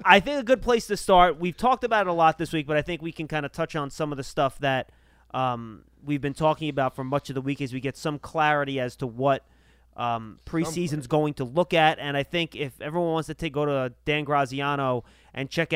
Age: 20-39